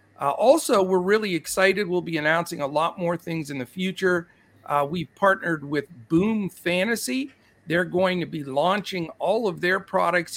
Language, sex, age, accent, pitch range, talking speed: English, male, 50-69, American, 155-205 Hz, 175 wpm